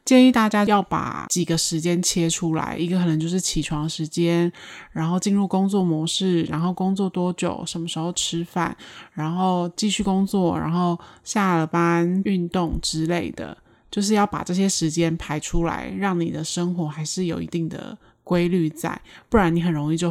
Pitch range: 165-190 Hz